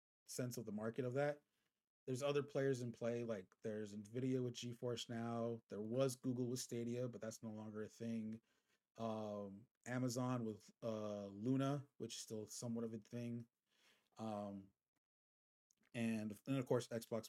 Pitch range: 110-125 Hz